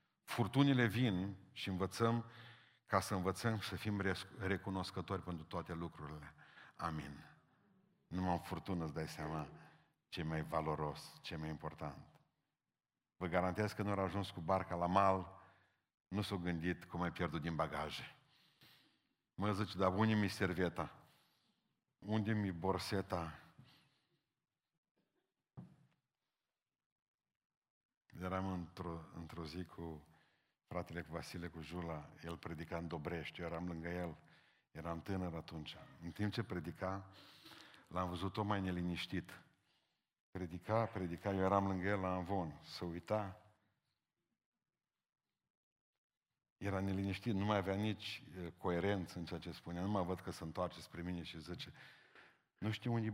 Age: 50-69